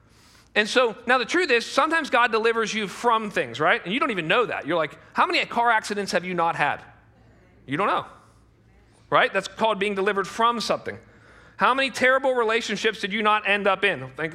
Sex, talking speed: male, 210 wpm